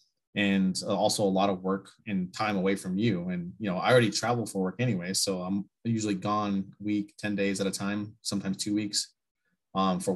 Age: 20-39